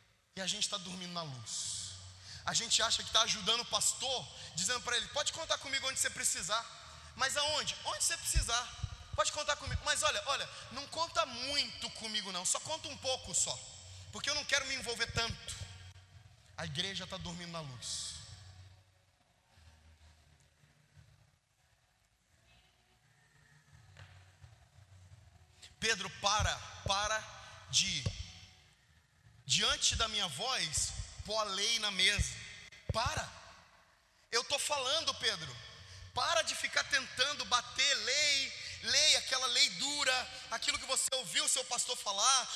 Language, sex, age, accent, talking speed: Portuguese, male, 20-39, Brazilian, 135 wpm